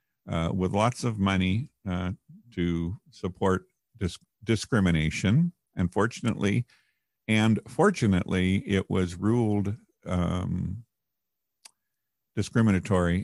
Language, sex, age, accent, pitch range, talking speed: English, male, 50-69, American, 90-115 Hz, 75 wpm